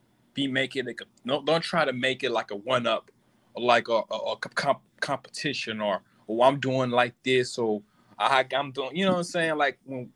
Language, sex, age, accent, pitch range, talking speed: English, male, 20-39, American, 125-150 Hz, 215 wpm